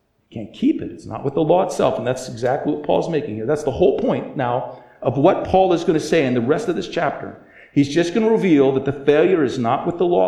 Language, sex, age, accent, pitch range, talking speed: English, male, 50-69, American, 110-145 Hz, 275 wpm